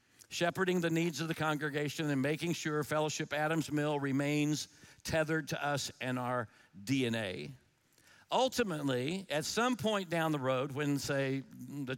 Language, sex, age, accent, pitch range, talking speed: English, male, 50-69, American, 135-175 Hz, 145 wpm